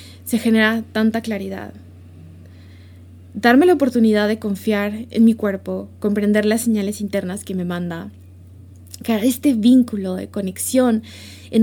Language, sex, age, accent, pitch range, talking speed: Spanish, female, 20-39, Mexican, 190-245 Hz, 130 wpm